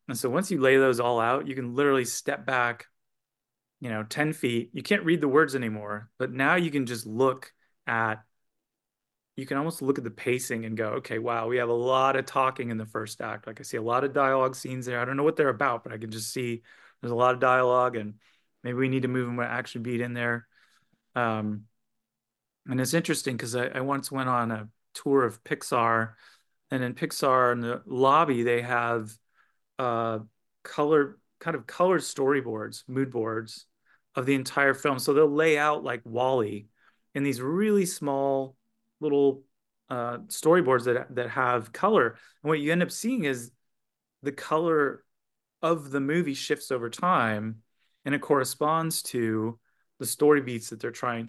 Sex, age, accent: male, 30-49, American